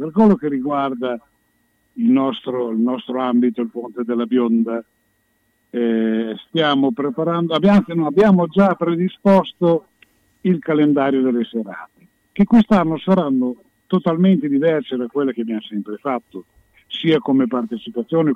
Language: Italian